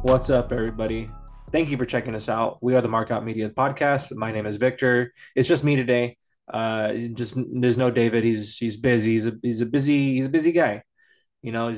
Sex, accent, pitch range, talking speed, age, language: male, American, 110-130 Hz, 220 wpm, 20-39, English